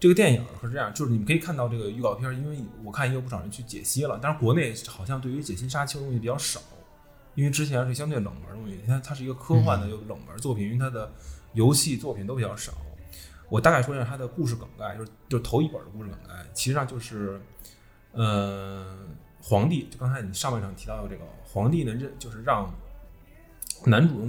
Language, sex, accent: Chinese, male, native